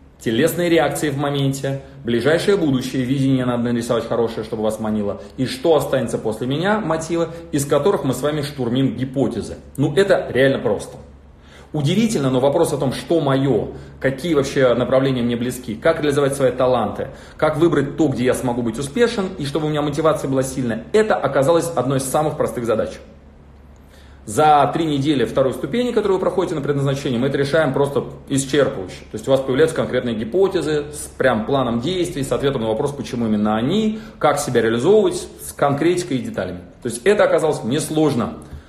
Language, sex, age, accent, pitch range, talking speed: Russian, male, 30-49, native, 125-160 Hz, 175 wpm